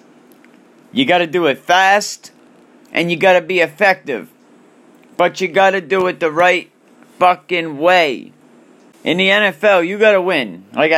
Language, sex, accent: English, male, American